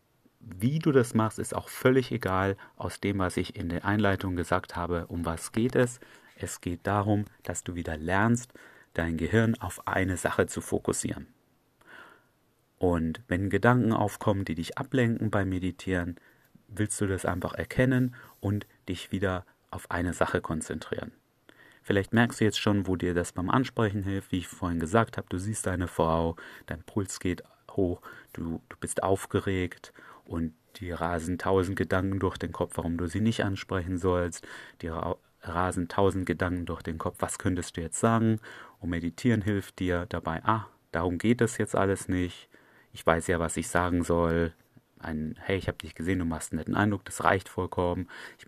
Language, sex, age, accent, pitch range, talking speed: German, male, 30-49, German, 85-105 Hz, 175 wpm